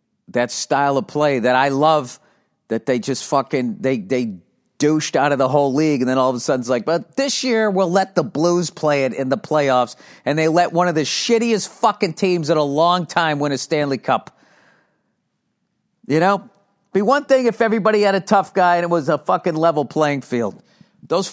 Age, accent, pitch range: 40-59, American, 115-175 Hz